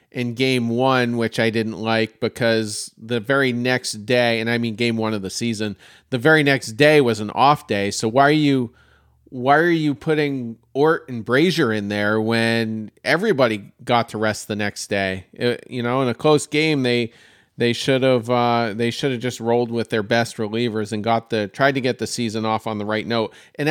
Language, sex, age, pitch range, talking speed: English, male, 40-59, 115-145 Hz, 215 wpm